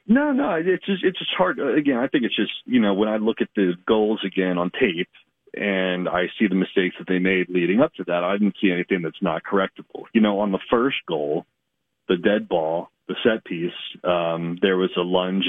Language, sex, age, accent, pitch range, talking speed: English, male, 40-59, American, 90-100 Hz, 235 wpm